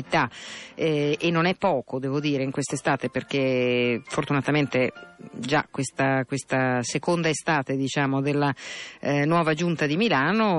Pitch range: 135-165 Hz